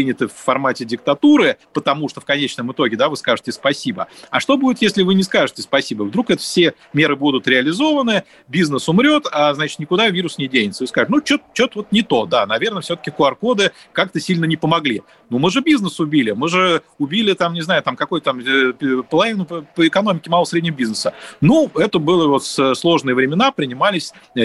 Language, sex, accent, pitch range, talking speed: Russian, male, native, 130-180 Hz, 190 wpm